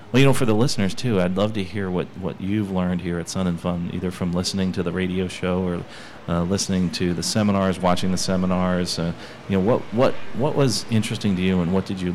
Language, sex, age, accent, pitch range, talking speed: English, male, 40-59, American, 90-105 Hz, 245 wpm